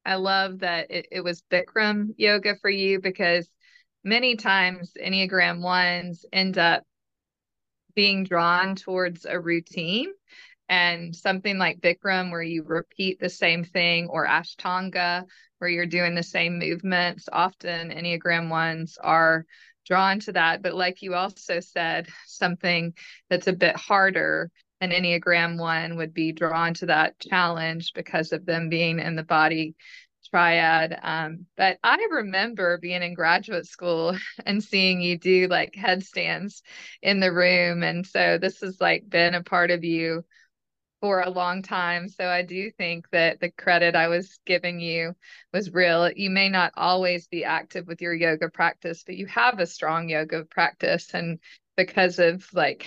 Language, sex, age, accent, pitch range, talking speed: English, female, 20-39, American, 170-190 Hz, 160 wpm